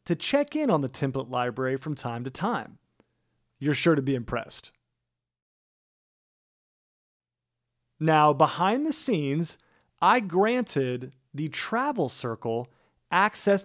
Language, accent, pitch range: English, American, 125-205 Hz